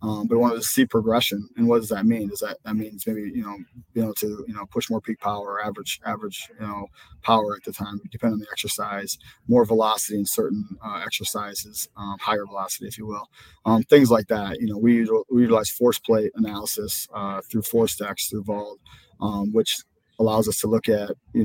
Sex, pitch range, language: male, 105-115 Hz, English